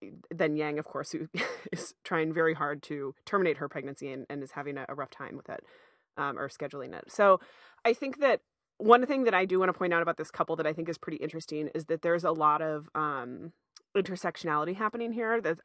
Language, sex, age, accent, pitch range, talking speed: English, female, 20-39, American, 150-185 Hz, 225 wpm